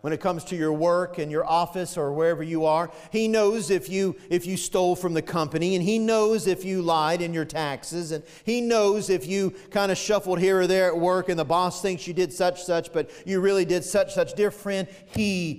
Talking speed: 240 wpm